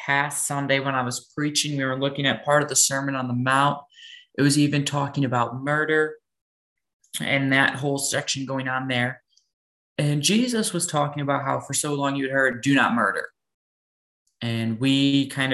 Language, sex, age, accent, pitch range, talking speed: English, male, 20-39, American, 130-205 Hz, 185 wpm